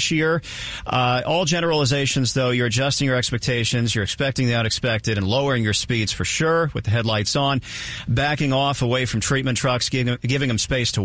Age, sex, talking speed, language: 50-69, male, 190 wpm, English